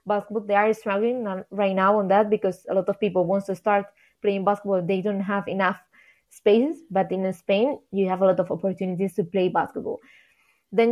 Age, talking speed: 20-39, 200 wpm